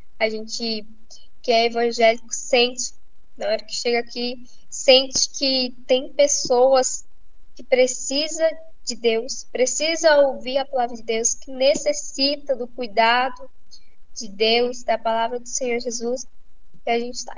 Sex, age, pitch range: female, 10-29, 230-275 Hz